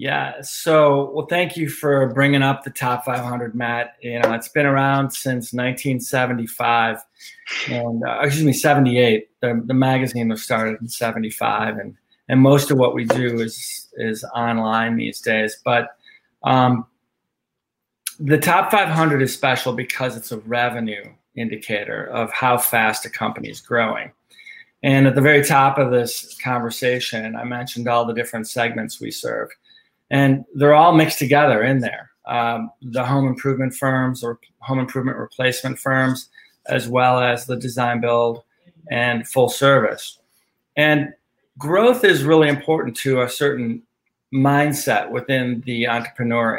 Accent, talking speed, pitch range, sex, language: American, 150 wpm, 120-140 Hz, male, English